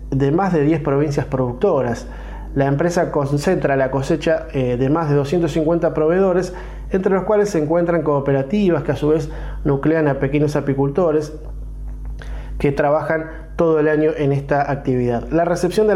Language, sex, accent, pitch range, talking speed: Spanish, male, Argentinian, 140-170 Hz, 155 wpm